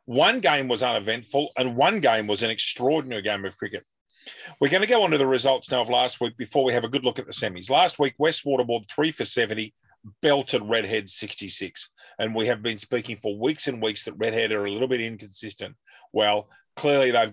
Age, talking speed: 40-59, 220 wpm